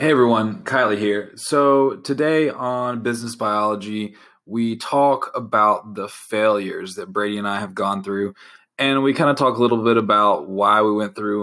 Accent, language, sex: American, English, male